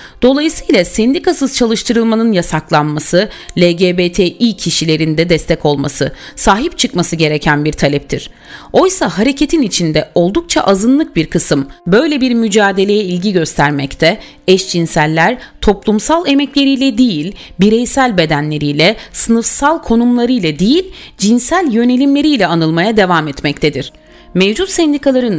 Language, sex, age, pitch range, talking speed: Turkish, female, 40-59, 160-235 Hz, 100 wpm